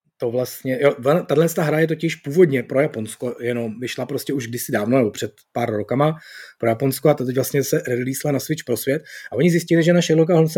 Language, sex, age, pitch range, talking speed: Czech, male, 30-49, 120-160 Hz, 220 wpm